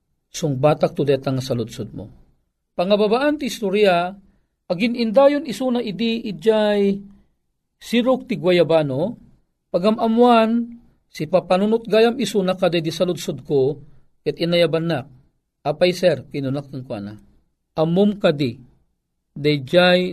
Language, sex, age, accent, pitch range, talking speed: Filipino, male, 50-69, native, 150-230 Hz, 105 wpm